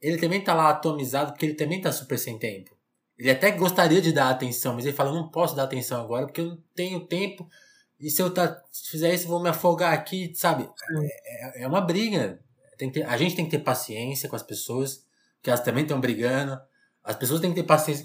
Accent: Brazilian